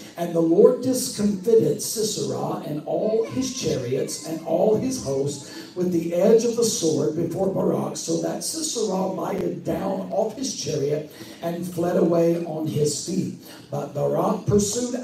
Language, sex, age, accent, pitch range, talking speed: English, male, 60-79, American, 165-215 Hz, 150 wpm